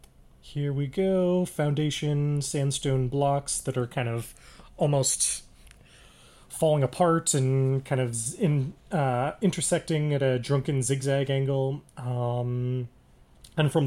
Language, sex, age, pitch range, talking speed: English, male, 30-49, 120-160 Hz, 115 wpm